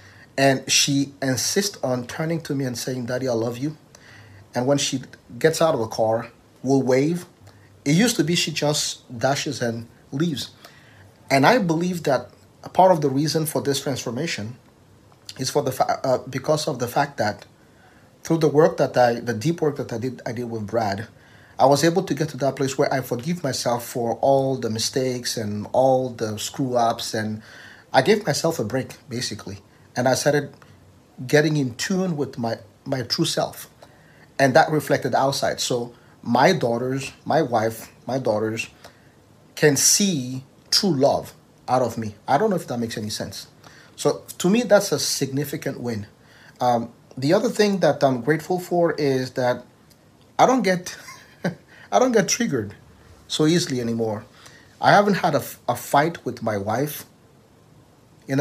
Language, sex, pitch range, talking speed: English, male, 115-150 Hz, 175 wpm